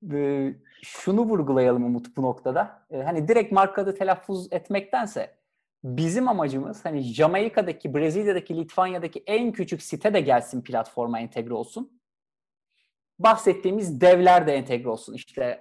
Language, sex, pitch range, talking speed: Turkish, male, 150-210 Hz, 115 wpm